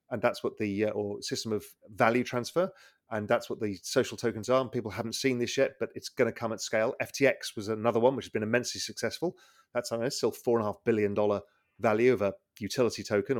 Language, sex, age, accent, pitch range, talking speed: English, male, 30-49, British, 105-130 Hz, 225 wpm